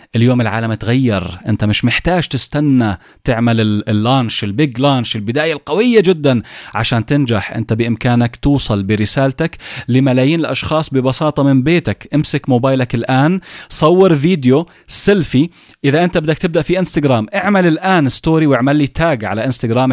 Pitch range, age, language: 115-150 Hz, 30-49, Arabic